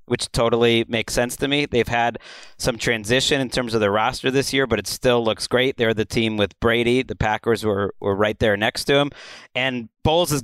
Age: 30-49